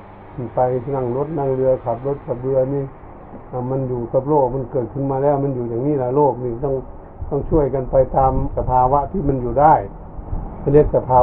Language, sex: Thai, male